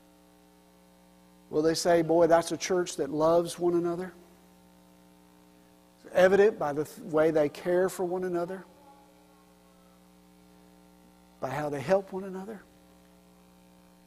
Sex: male